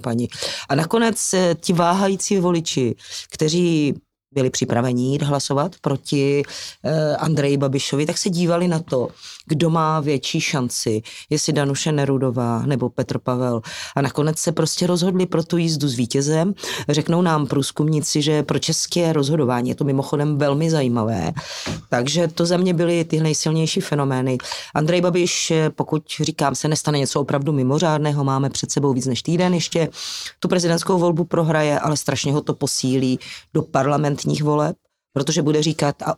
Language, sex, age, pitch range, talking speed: Czech, female, 30-49, 135-160 Hz, 150 wpm